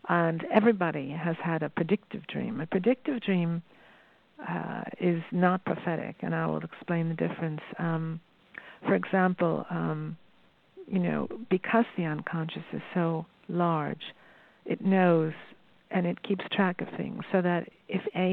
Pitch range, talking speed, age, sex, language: 165-190 Hz, 145 wpm, 50-69, female, English